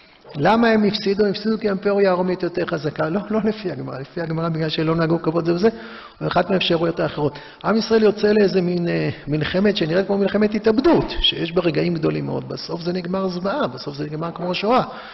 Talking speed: 200 wpm